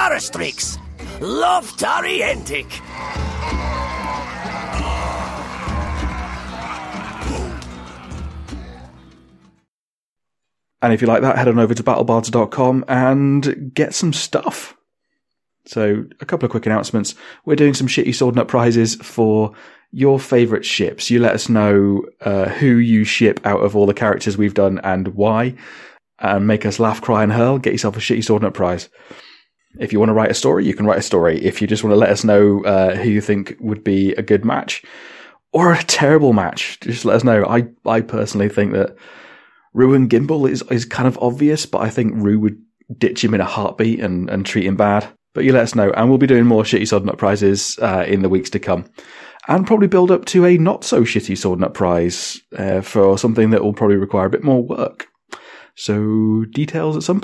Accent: British